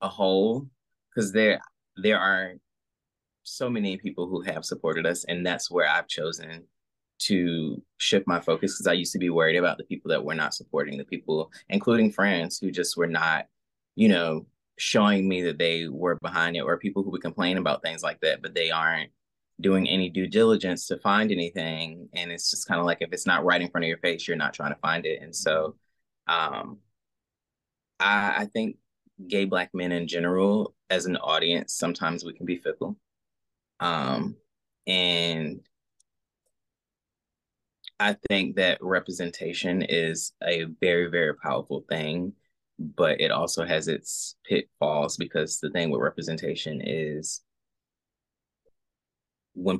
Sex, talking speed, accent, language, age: male, 165 wpm, American, English, 20-39